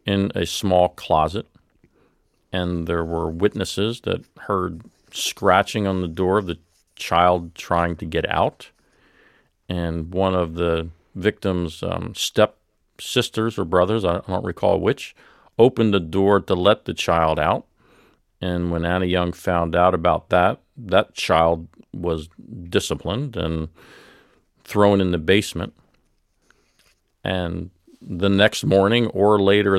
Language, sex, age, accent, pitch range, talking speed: English, male, 40-59, American, 85-95 Hz, 130 wpm